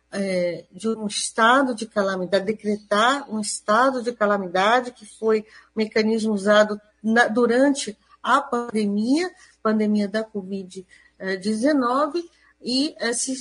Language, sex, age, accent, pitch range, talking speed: Portuguese, female, 50-69, Brazilian, 205-250 Hz, 100 wpm